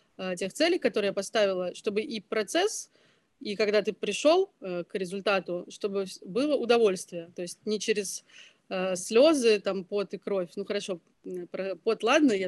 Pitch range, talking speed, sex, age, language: 190-235 Hz, 150 wpm, female, 30-49, Russian